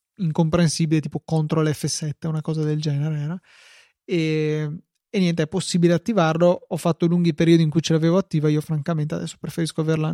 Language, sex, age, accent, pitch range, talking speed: Italian, male, 20-39, native, 155-180 Hz, 170 wpm